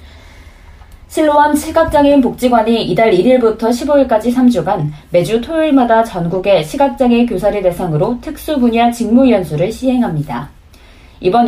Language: Korean